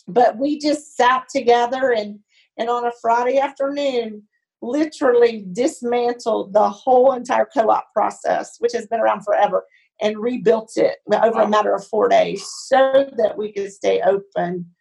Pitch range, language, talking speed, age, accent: 210-260 Hz, English, 155 wpm, 40-59, American